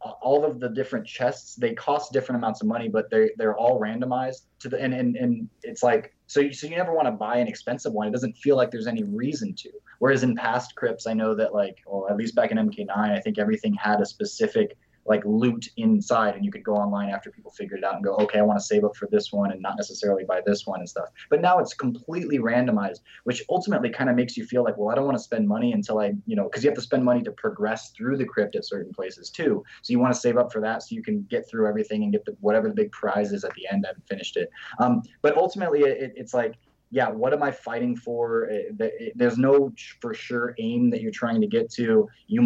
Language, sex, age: English, male, 20-39